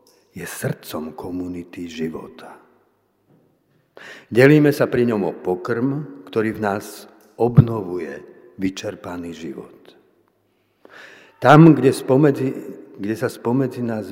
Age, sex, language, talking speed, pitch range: 50-69, male, Slovak, 100 wpm, 100-135 Hz